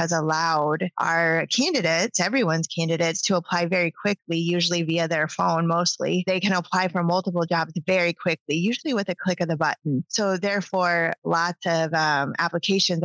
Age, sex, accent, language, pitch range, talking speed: 20-39, female, American, English, 165-195 Hz, 165 wpm